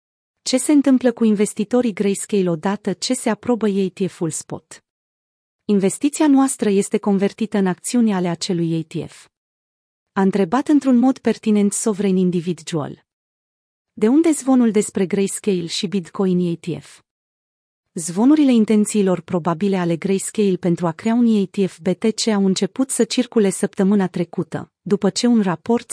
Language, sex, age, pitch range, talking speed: Romanian, female, 30-49, 180-225 Hz, 130 wpm